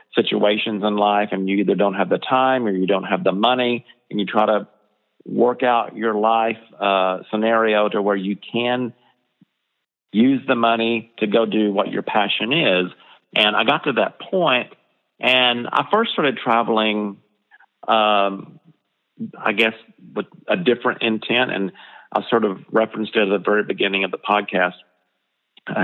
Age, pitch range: 40-59, 100-115 Hz